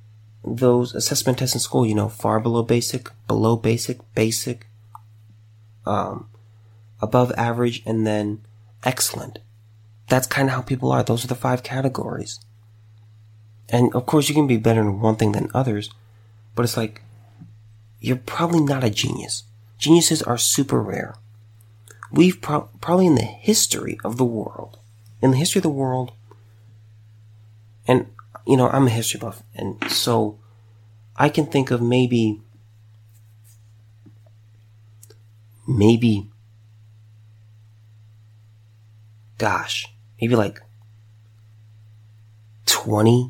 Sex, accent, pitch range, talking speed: male, American, 110-120 Hz, 120 wpm